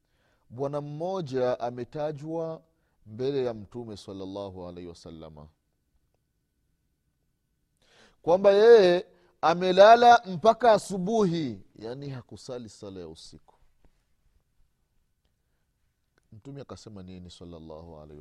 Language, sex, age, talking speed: Swahili, male, 30-49, 80 wpm